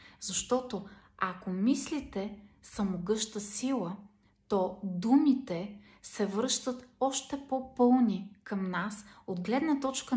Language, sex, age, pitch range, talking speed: Bulgarian, female, 30-49, 195-245 Hz, 100 wpm